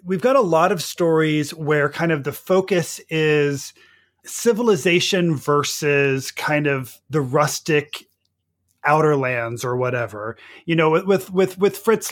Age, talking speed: 30-49, 140 wpm